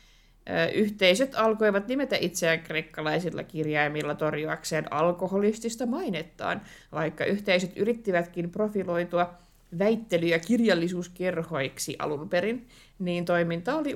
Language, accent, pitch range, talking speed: Finnish, native, 160-210 Hz, 90 wpm